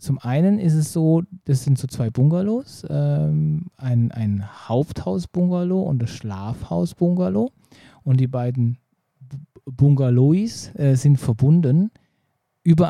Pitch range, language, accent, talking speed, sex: 120-155 Hz, German, German, 115 wpm, male